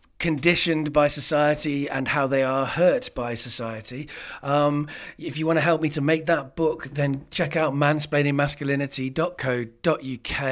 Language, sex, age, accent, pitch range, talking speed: English, male, 40-59, British, 125-155 Hz, 145 wpm